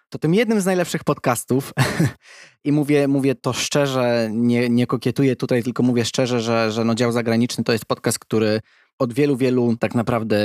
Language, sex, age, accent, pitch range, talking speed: Polish, male, 20-39, native, 115-135 Hz, 180 wpm